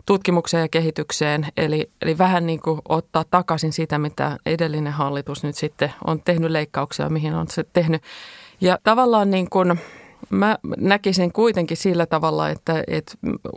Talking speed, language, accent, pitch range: 150 wpm, Finnish, native, 160-185 Hz